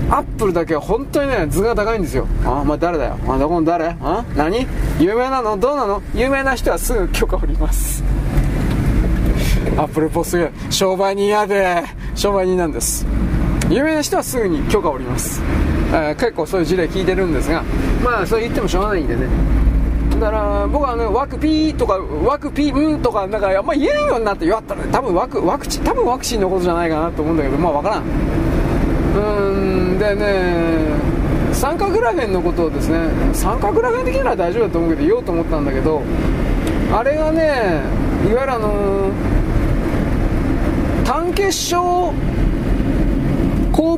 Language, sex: Japanese, male